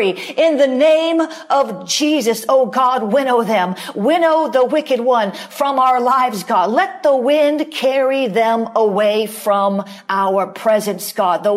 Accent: American